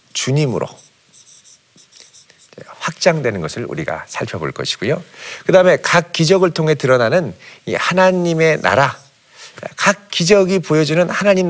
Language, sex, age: Korean, male, 50-69